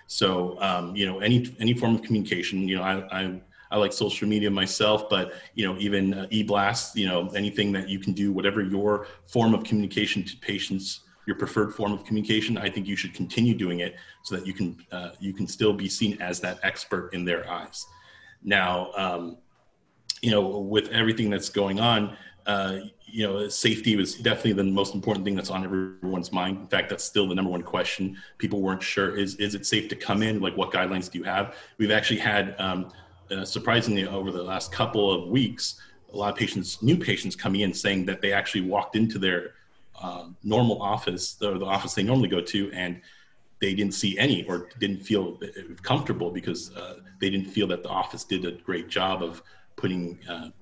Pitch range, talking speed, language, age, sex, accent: 95-105 Hz, 205 wpm, English, 30-49, male, American